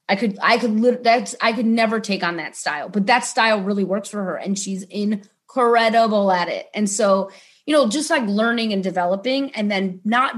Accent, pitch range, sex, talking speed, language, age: American, 185-230 Hz, female, 210 wpm, English, 30-49